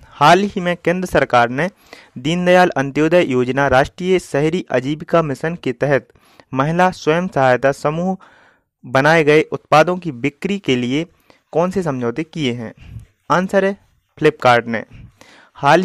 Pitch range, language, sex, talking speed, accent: 130-180 Hz, Hindi, male, 135 wpm, native